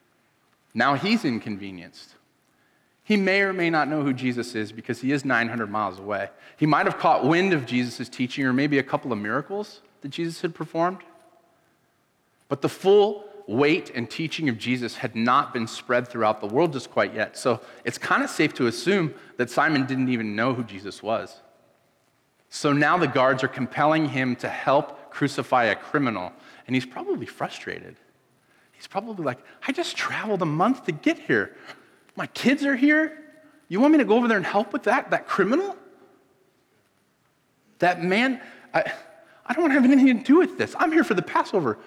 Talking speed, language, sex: 190 wpm, English, male